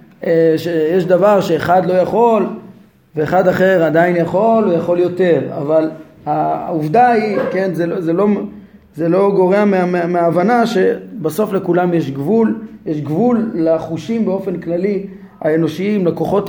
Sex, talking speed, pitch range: male, 125 wpm, 165-215 Hz